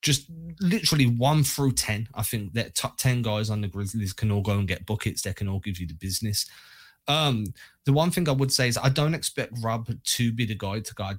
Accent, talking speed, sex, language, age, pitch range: British, 240 wpm, male, English, 20-39, 105-125 Hz